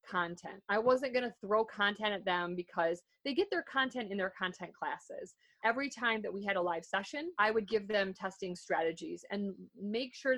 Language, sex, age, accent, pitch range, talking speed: English, female, 30-49, American, 190-250 Hz, 200 wpm